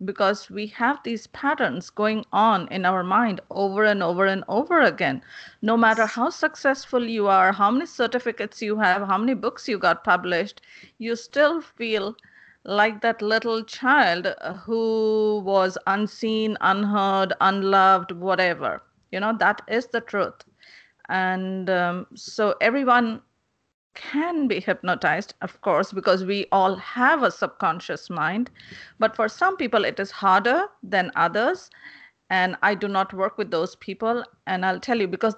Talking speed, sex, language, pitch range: 155 wpm, female, English, 190-230 Hz